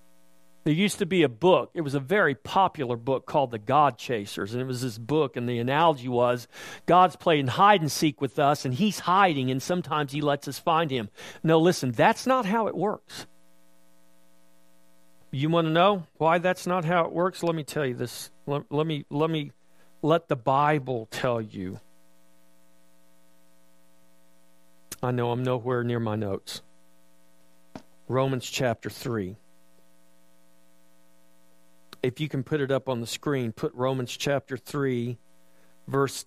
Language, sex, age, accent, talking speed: English, male, 50-69, American, 155 wpm